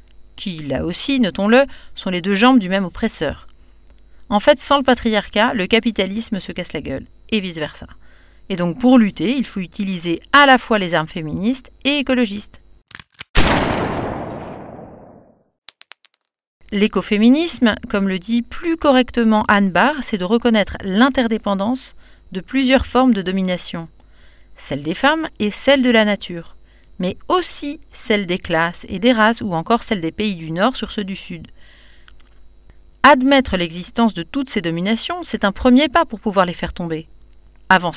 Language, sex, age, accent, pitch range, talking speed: French, female, 40-59, French, 180-250 Hz, 155 wpm